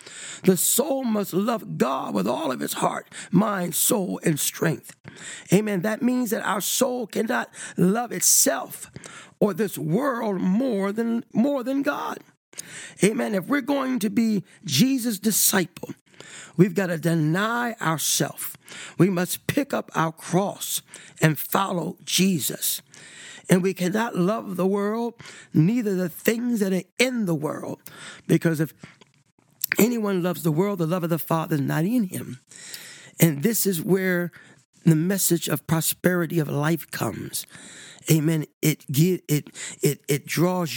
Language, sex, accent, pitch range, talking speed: English, male, American, 160-205 Hz, 145 wpm